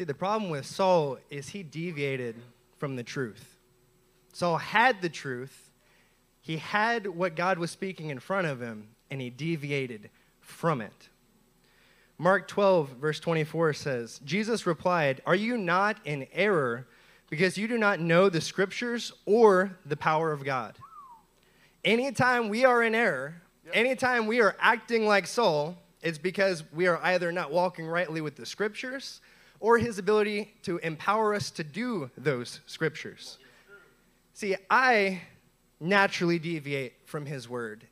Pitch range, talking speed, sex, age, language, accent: 140-200 Hz, 145 wpm, male, 20-39, English, American